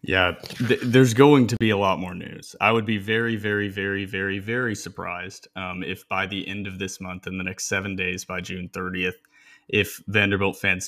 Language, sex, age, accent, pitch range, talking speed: English, male, 20-39, American, 95-110 Hz, 210 wpm